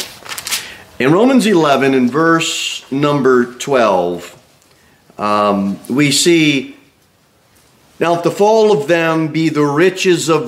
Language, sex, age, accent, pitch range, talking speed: English, male, 40-59, American, 125-165 Hz, 115 wpm